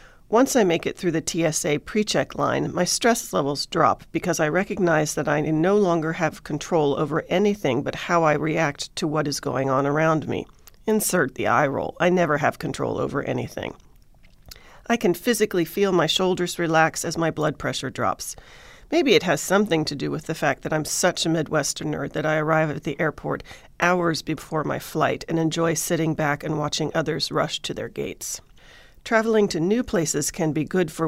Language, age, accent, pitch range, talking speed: English, 40-59, American, 150-180 Hz, 195 wpm